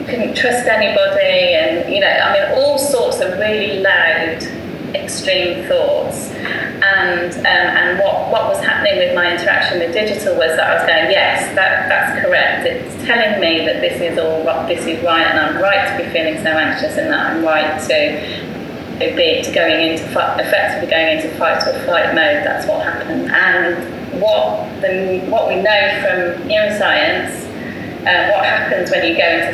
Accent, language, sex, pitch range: British, English, female, 190-280 Hz